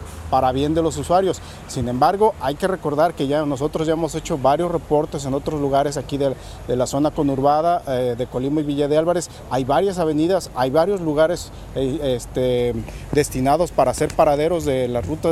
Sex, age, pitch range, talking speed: male, 40-59, 135-160 Hz, 190 wpm